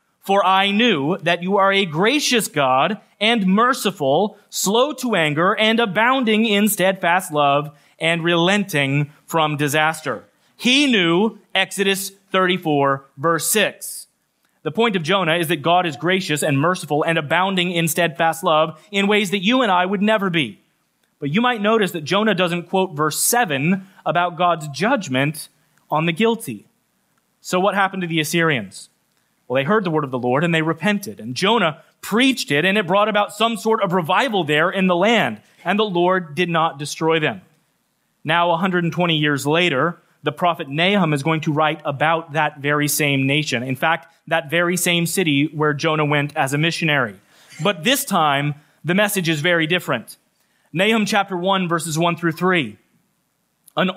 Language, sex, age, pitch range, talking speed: English, male, 30-49, 155-200 Hz, 170 wpm